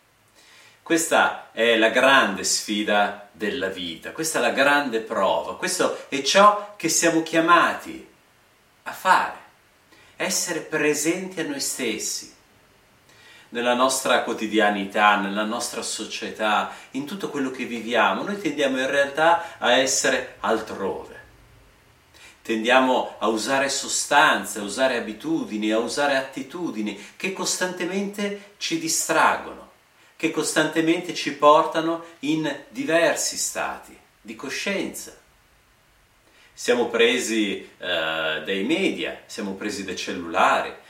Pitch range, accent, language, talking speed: 110-170 Hz, native, Italian, 110 wpm